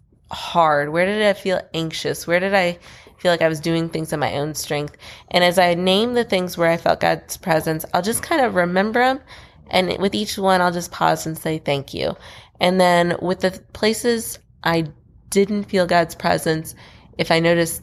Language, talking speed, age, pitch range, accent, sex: English, 200 wpm, 20-39, 155-180 Hz, American, female